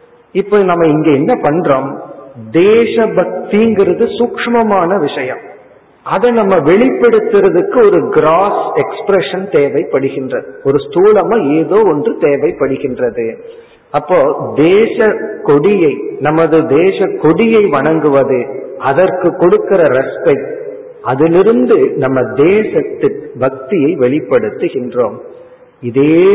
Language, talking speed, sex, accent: Tamil, 65 wpm, male, native